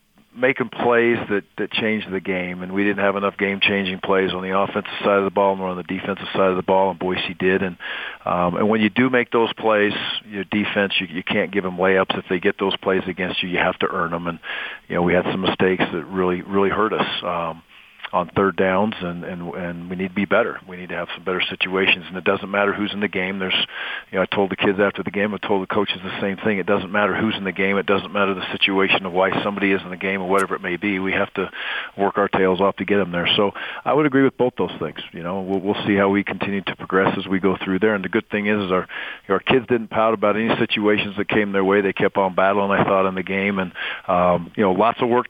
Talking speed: 275 wpm